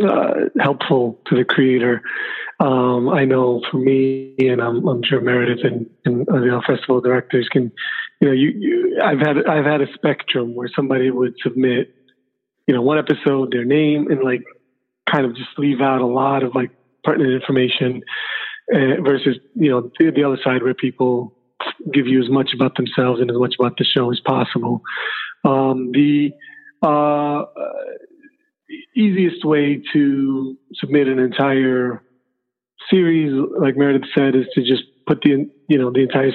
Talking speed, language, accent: 165 wpm, English, American